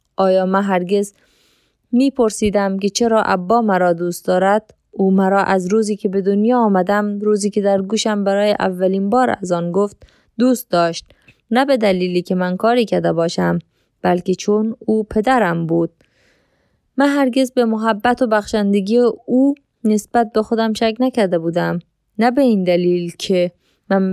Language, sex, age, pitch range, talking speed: Persian, female, 20-39, 180-215 Hz, 155 wpm